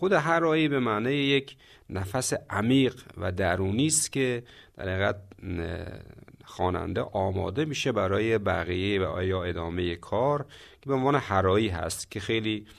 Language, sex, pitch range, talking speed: Persian, male, 95-140 Hz, 135 wpm